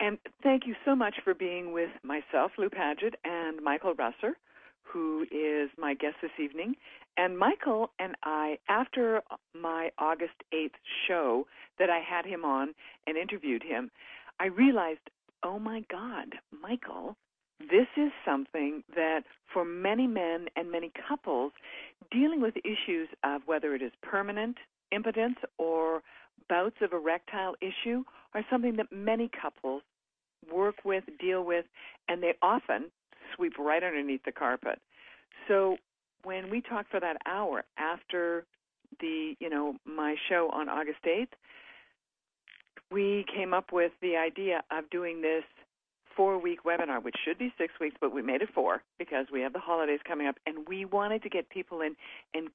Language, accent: English, American